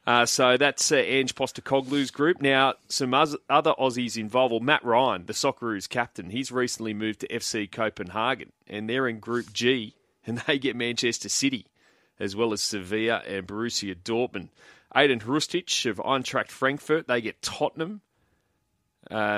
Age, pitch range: 30-49, 100-125 Hz